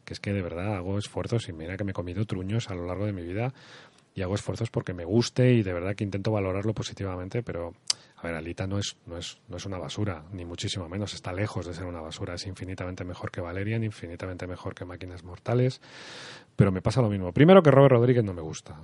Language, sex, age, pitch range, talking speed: Spanish, male, 30-49, 95-120 Hz, 240 wpm